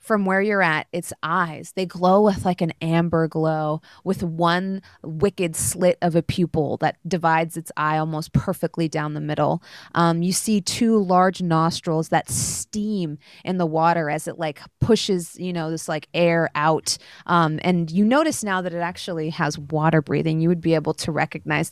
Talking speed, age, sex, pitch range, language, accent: 185 wpm, 20-39, female, 165-205 Hz, English, American